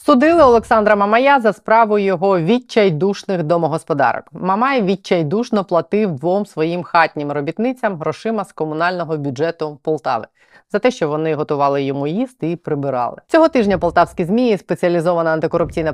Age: 20-39